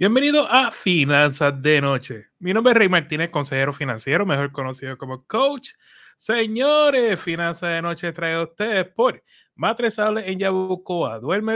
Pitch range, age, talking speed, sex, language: 165-195 Hz, 30-49, 145 wpm, male, Spanish